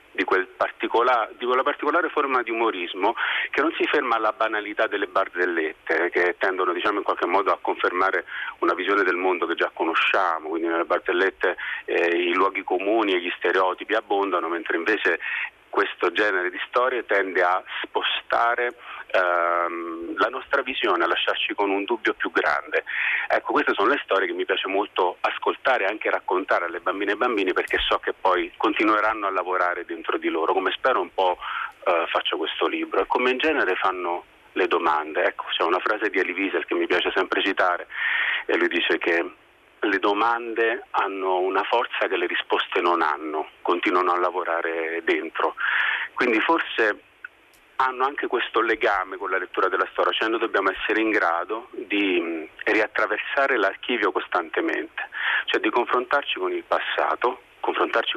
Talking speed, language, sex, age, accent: 165 wpm, Italian, male, 40-59, native